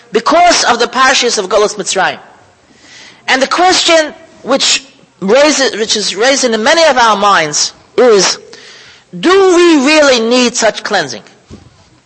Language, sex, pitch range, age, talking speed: English, male, 200-275 Hz, 40-59, 135 wpm